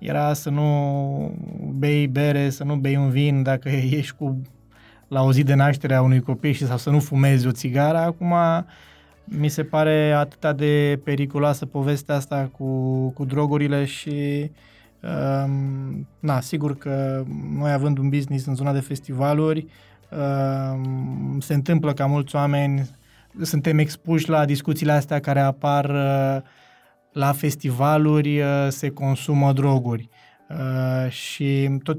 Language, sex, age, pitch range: Romanian, male, 20-39, 135-150 Hz